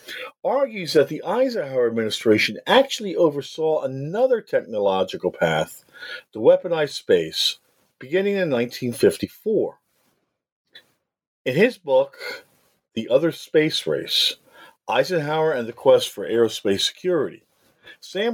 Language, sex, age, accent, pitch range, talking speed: English, male, 50-69, American, 120-195 Hz, 100 wpm